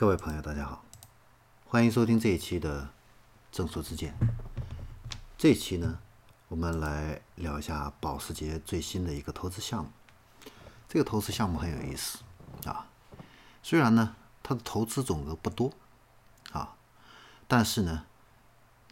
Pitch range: 80-115 Hz